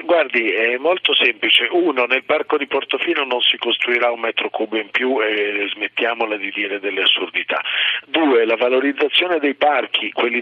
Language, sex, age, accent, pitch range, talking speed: Italian, male, 50-69, native, 120-150 Hz, 165 wpm